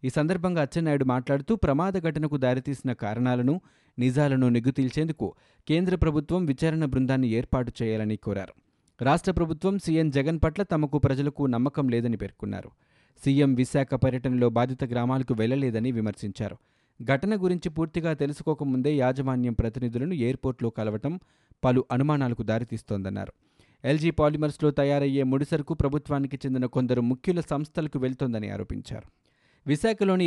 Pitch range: 120-150 Hz